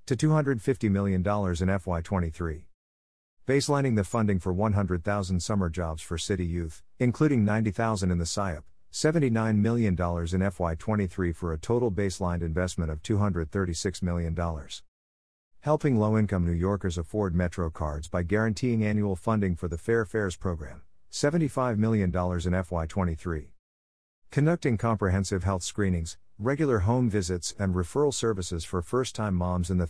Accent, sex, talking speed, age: American, male, 140 wpm, 50-69